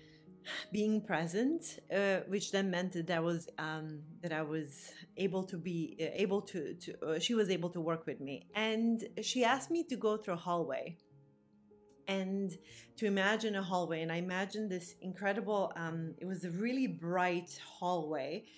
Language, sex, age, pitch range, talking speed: English, female, 30-49, 165-220 Hz, 175 wpm